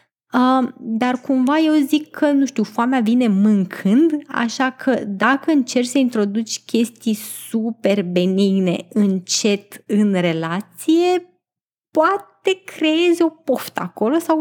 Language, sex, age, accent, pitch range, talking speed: Romanian, female, 20-39, native, 210-295 Hz, 120 wpm